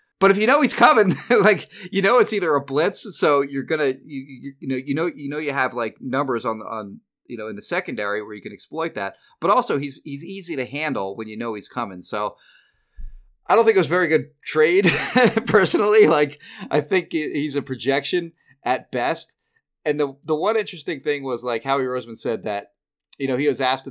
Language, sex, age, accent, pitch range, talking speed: English, male, 30-49, American, 115-170 Hz, 220 wpm